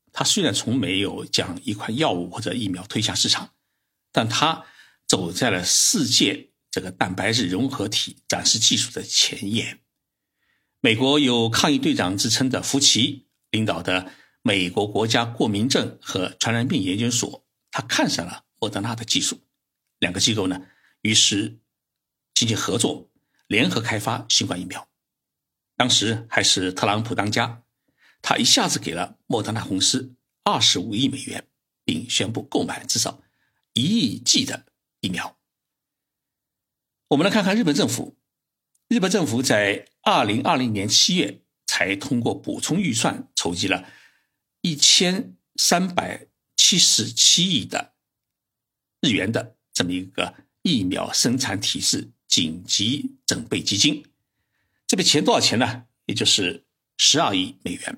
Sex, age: male, 60-79